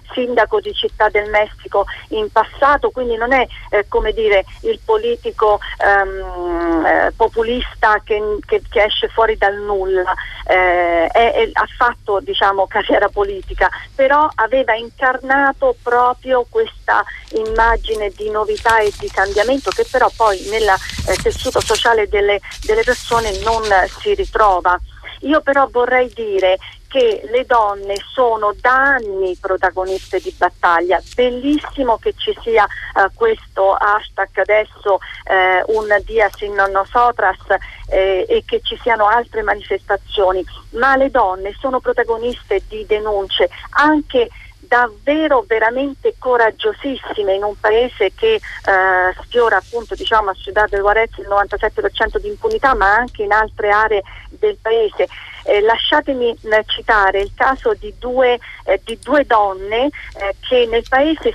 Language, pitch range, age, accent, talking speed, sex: Italian, 200-270 Hz, 40-59, native, 135 wpm, female